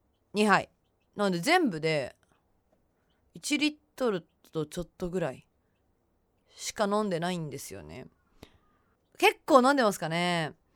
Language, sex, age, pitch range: Japanese, female, 20-39, 160-260 Hz